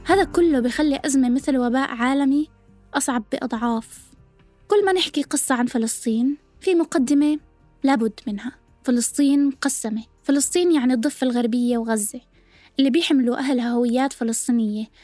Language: Arabic